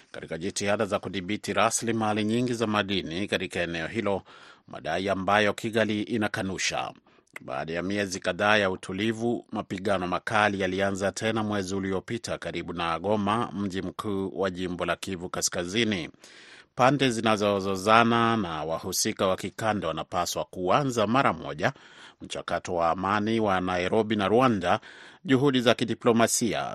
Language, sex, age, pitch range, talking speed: Swahili, male, 30-49, 90-110 Hz, 130 wpm